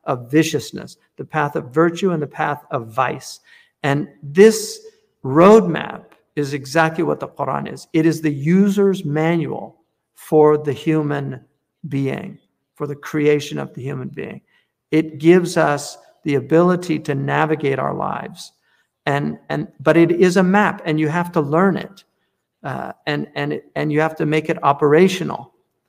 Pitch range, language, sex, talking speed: 150-170 Hz, English, male, 160 wpm